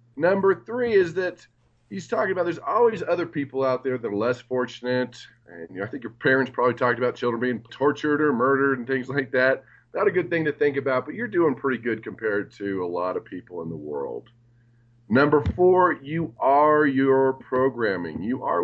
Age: 40-59